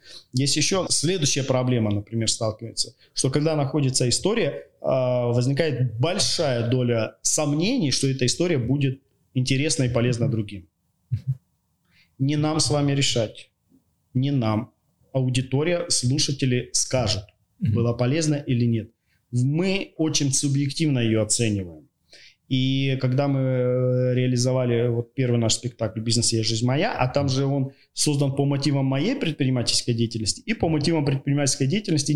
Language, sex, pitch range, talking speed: Russian, male, 115-145 Hz, 125 wpm